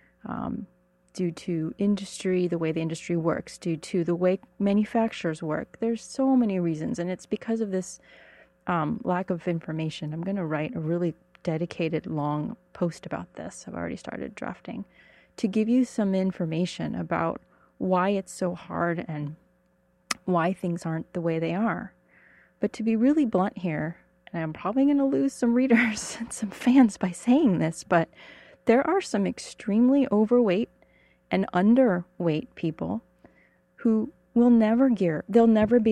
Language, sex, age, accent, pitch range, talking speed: English, female, 30-49, American, 170-215 Hz, 160 wpm